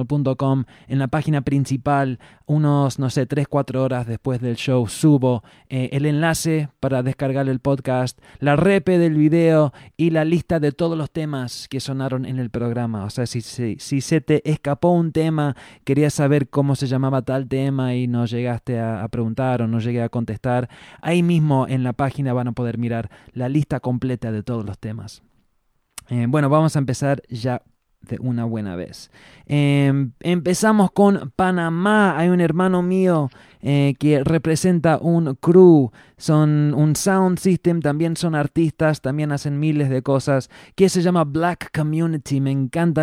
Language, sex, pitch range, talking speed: English, male, 130-160 Hz, 170 wpm